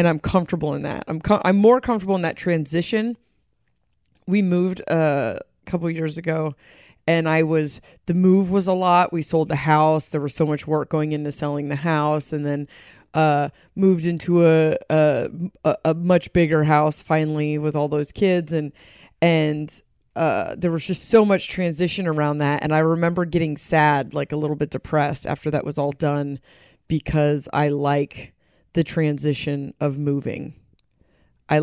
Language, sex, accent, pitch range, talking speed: English, female, American, 150-170 Hz, 175 wpm